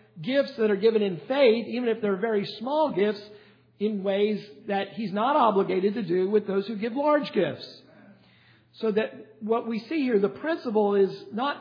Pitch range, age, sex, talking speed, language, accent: 185-230 Hz, 50-69, male, 185 wpm, English, American